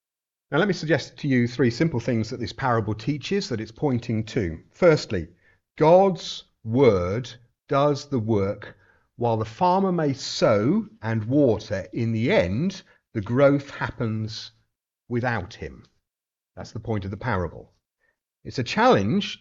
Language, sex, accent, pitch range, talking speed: English, male, British, 110-150 Hz, 145 wpm